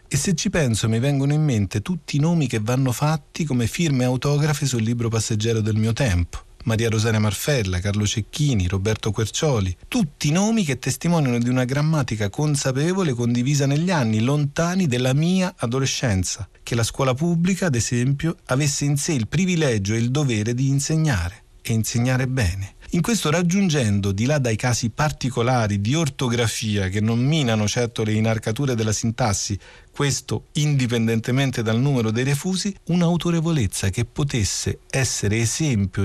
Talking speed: 155 wpm